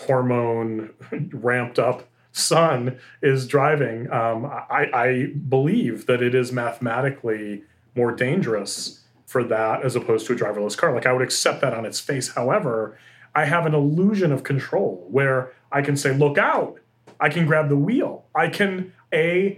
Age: 30-49